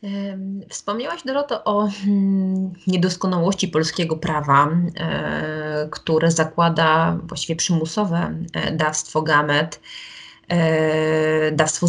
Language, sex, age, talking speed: Polish, female, 20-39, 65 wpm